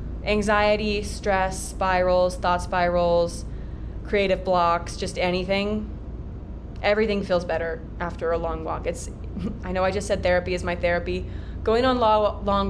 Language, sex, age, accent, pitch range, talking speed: English, female, 20-39, American, 165-210 Hz, 135 wpm